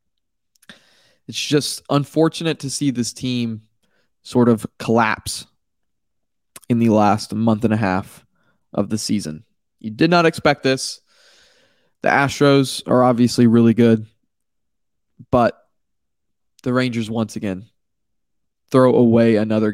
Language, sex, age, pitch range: English, male, 20-39, 115-145 Hz